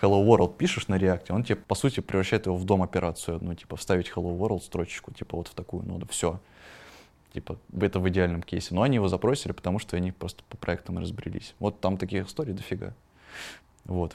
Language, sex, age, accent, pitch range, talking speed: Russian, male, 20-39, native, 90-100 Hz, 205 wpm